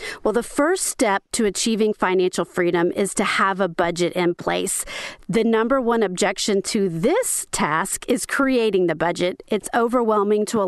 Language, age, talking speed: English, 40-59, 170 wpm